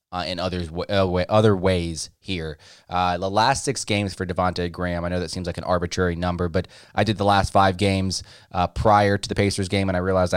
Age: 20-39